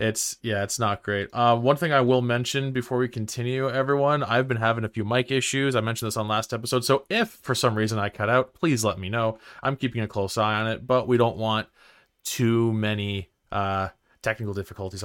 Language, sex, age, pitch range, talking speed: English, male, 20-39, 105-130 Hz, 225 wpm